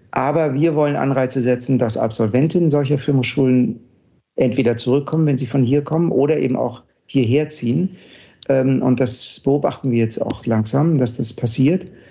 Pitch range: 120-145 Hz